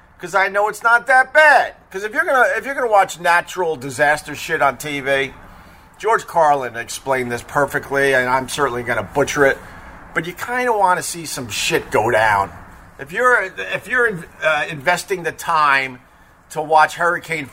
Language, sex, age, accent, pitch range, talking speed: English, male, 50-69, American, 135-180 Hz, 180 wpm